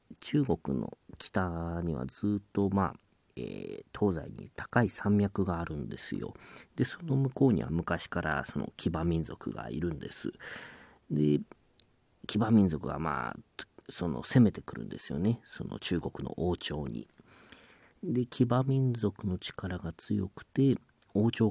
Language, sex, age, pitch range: Japanese, male, 40-59, 85-120 Hz